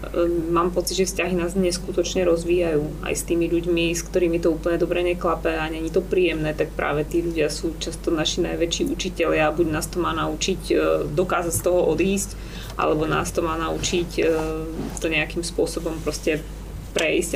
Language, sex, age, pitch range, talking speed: English, female, 20-39, 165-185 Hz, 175 wpm